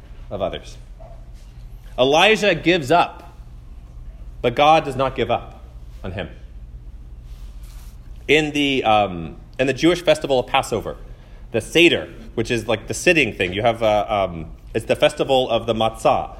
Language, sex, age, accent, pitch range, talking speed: English, male, 30-49, American, 95-150 Hz, 145 wpm